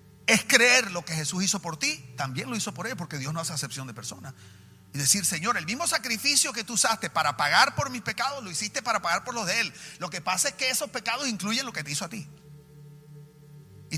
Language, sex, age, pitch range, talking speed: Spanish, male, 40-59, 135-230 Hz, 245 wpm